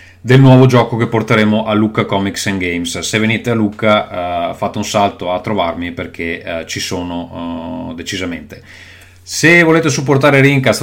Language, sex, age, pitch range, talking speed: Italian, male, 30-49, 95-120 Hz, 165 wpm